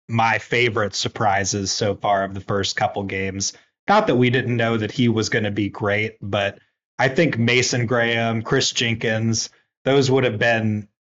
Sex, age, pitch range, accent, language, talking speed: male, 30-49, 100-125 Hz, American, English, 180 wpm